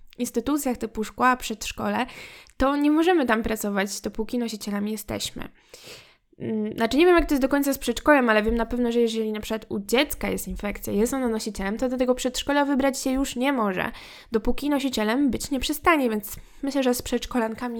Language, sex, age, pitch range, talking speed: Polish, female, 10-29, 220-285 Hz, 190 wpm